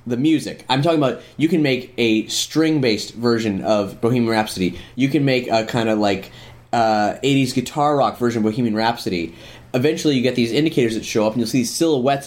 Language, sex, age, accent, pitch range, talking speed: English, male, 20-39, American, 115-145 Hz, 195 wpm